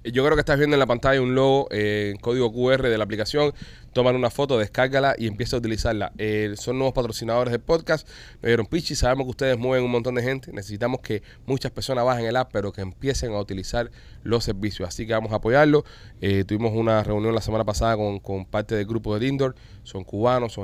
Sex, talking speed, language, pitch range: male, 225 wpm, Spanish, 105-130 Hz